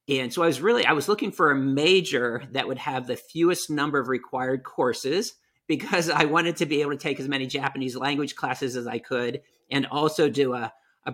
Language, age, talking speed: English, 50-69, 220 wpm